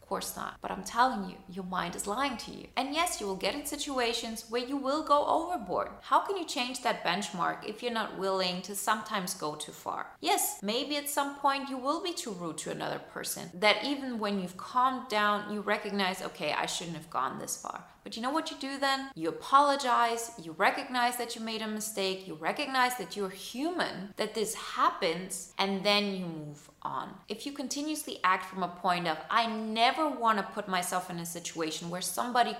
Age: 20-39